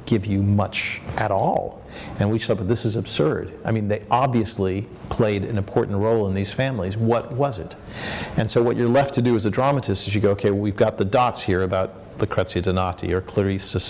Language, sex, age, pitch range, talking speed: English, male, 40-59, 95-110 Hz, 220 wpm